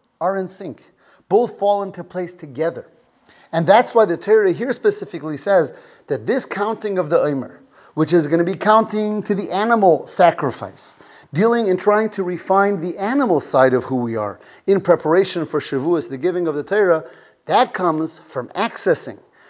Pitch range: 130-190 Hz